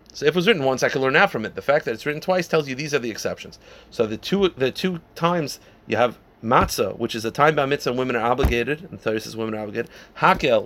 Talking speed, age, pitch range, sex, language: 280 wpm, 30-49, 115-155 Hz, male, English